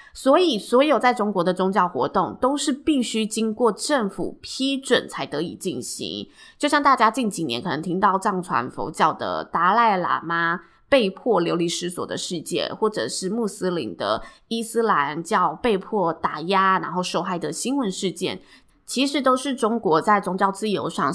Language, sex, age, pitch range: Chinese, female, 20-39, 175-240 Hz